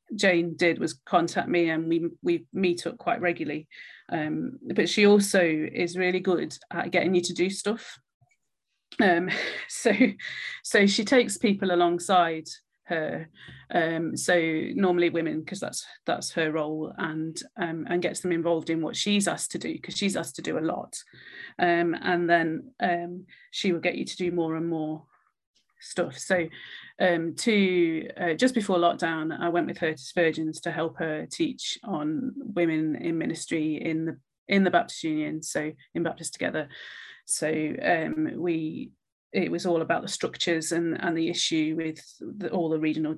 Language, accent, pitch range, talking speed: English, British, 160-180 Hz, 170 wpm